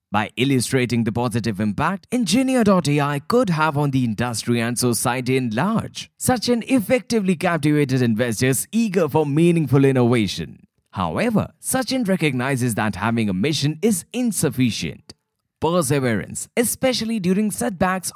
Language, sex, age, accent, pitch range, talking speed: English, male, 20-39, Indian, 130-185 Hz, 120 wpm